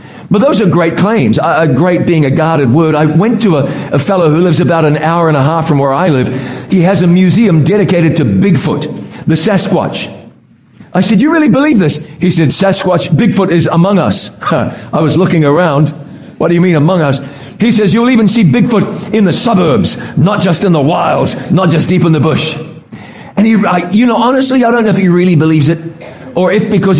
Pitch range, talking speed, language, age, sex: 160-210 Hz, 220 wpm, English, 50-69, male